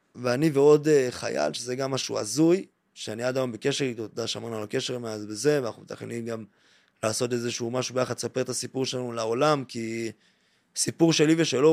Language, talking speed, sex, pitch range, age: Hebrew, 175 wpm, male, 125-165 Hz, 20-39